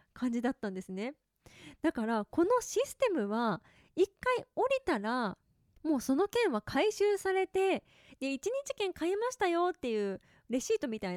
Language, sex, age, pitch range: Japanese, female, 20-39, 225-355 Hz